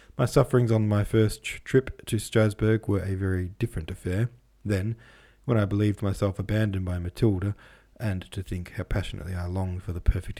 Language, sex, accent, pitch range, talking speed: English, male, Australian, 90-110 Hz, 180 wpm